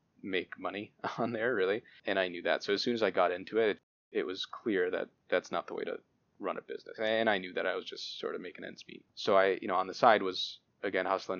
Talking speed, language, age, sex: 270 wpm, English, 20-39, male